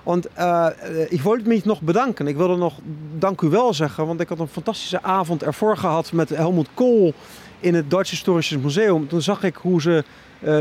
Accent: Dutch